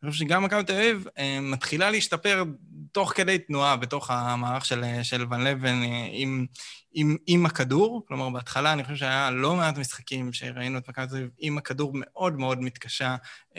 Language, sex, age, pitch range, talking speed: Hebrew, male, 20-39, 125-150 Hz, 170 wpm